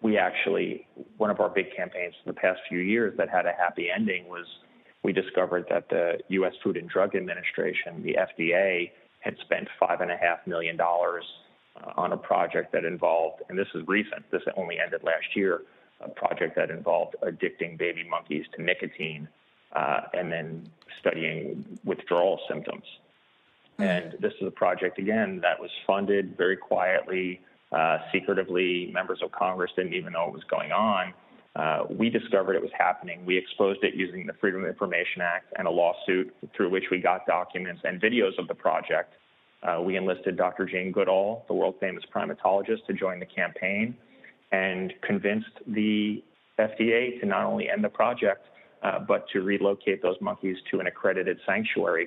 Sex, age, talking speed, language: male, 30-49, 170 wpm, English